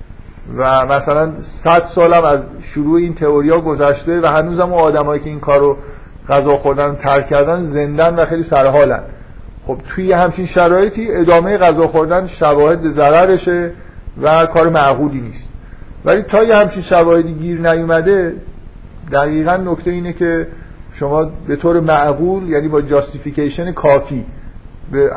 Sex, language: male, Persian